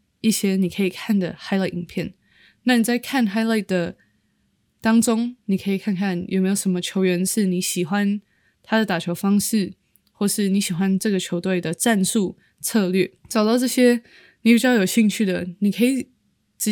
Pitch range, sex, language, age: 185-215 Hz, female, Chinese, 20-39